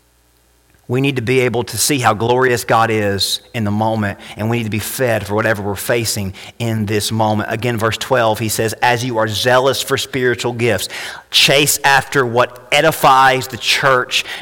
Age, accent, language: 40-59, American, English